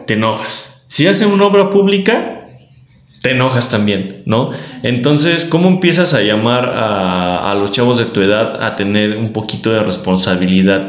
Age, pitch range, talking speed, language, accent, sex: 20-39, 95-120 Hz, 160 wpm, Spanish, Mexican, male